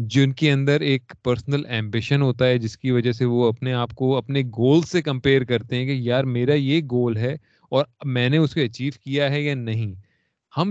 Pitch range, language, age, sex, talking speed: 125-155 Hz, Urdu, 30-49, male, 220 wpm